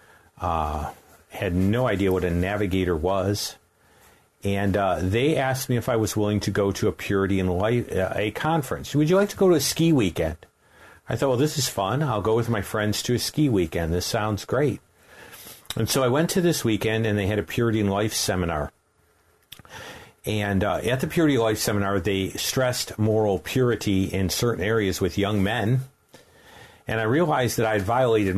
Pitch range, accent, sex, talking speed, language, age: 95-125 Hz, American, male, 200 wpm, English, 50-69